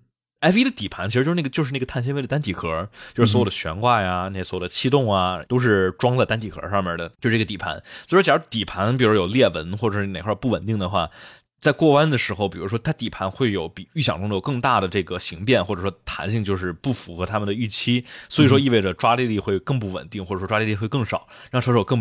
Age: 20-39